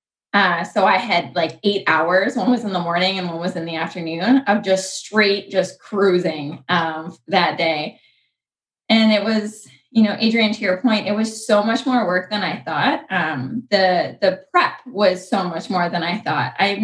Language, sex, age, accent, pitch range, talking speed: English, female, 20-39, American, 175-215 Hz, 200 wpm